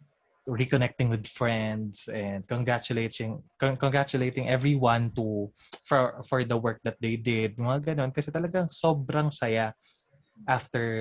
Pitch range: 115-140 Hz